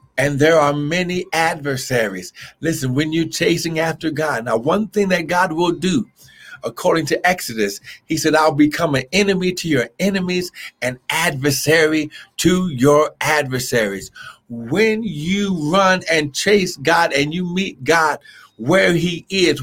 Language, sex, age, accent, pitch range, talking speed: English, male, 50-69, American, 135-180 Hz, 145 wpm